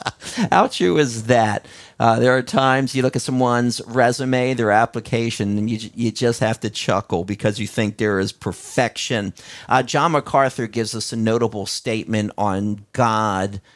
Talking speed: 165 wpm